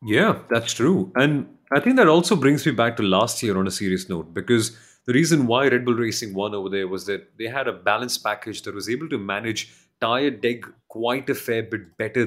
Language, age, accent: English, 30-49, Indian